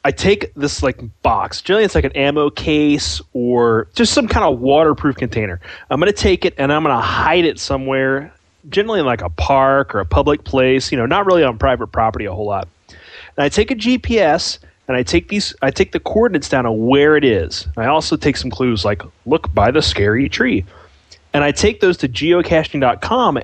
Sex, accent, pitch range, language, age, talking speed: male, American, 120-155 Hz, English, 30-49, 210 wpm